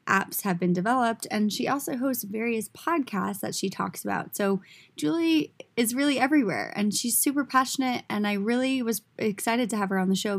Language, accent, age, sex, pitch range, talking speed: English, American, 20-39, female, 195-250 Hz, 195 wpm